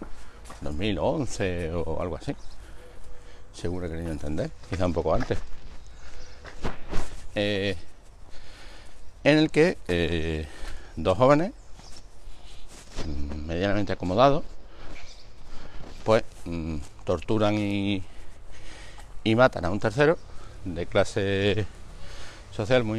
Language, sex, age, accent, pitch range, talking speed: Spanish, male, 60-79, Spanish, 85-110 Hz, 90 wpm